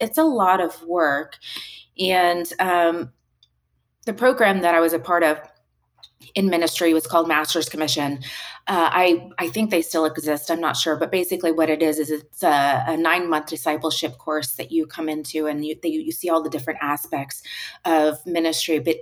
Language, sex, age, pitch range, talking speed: English, female, 30-49, 155-185 Hz, 185 wpm